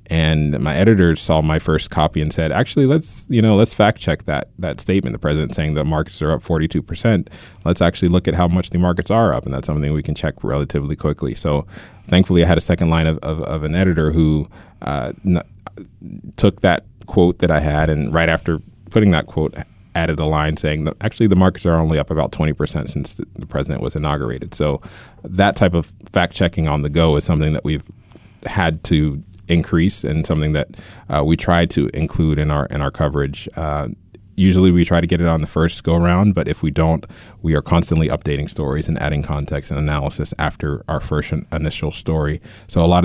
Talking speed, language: 215 wpm, English